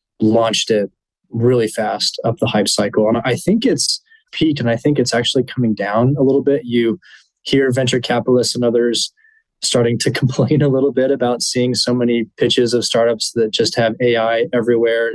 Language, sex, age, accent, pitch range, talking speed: English, male, 20-39, American, 110-130 Hz, 185 wpm